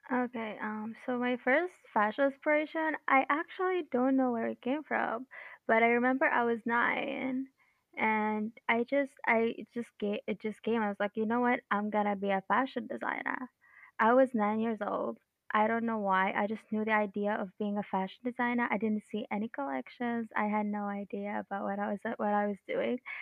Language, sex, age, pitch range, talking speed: English, female, 10-29, 210-255 Hz, 200 wpm